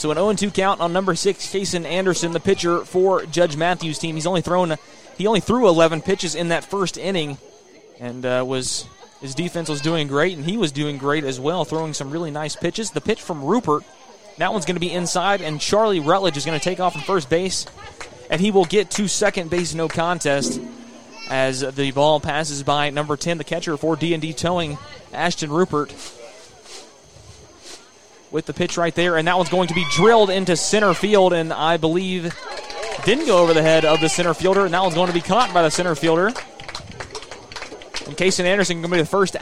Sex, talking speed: male, 210 wpm